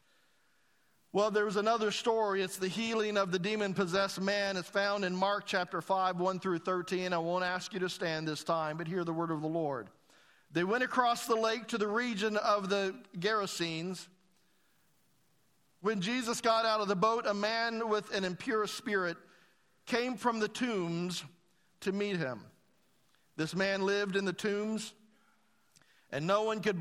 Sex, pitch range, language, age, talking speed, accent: male, 185-225 Hz, English, 50-69, 170 wpm, American